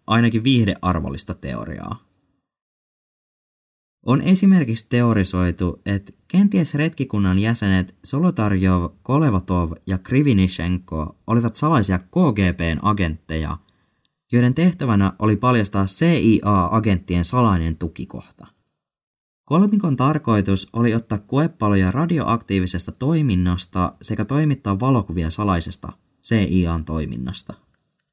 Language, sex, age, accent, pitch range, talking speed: Finnish, male, 20-39, native, 90-120 Hz, 80 wpm